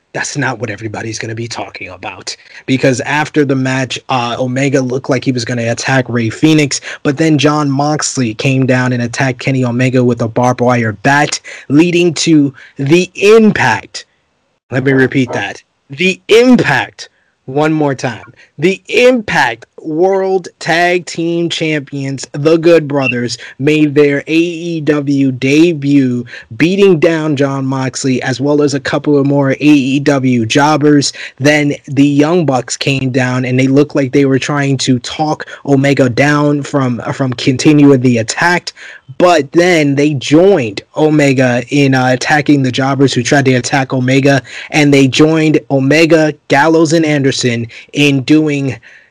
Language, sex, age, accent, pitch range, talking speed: English, male, 20-39, American, 130-155 Hz, 150 wpm